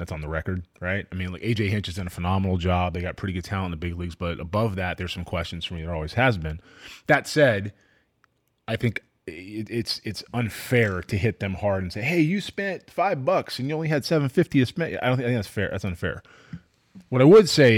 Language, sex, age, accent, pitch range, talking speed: English, male, 30-49, American, 95-120 Hz, 255 wpm